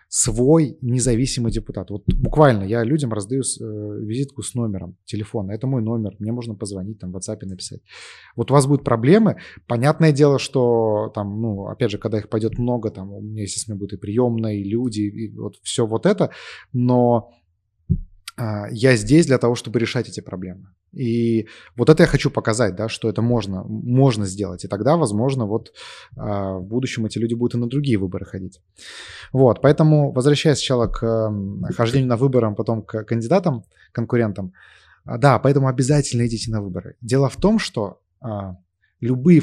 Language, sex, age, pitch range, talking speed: Russian, male, 20-39, 105-135 Hz, 170 wpm